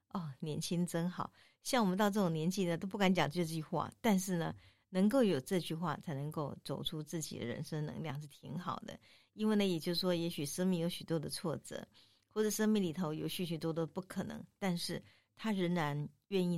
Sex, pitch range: female, 160-195 Hz